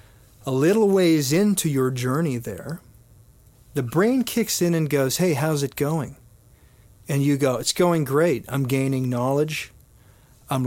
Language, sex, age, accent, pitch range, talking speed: English, male, 40-59, American, 120-150 Hz, 150 wpm